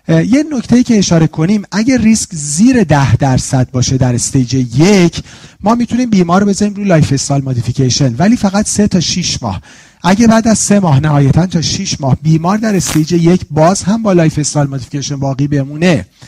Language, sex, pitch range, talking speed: Persian, male, 135-180 Hz, 175 wpm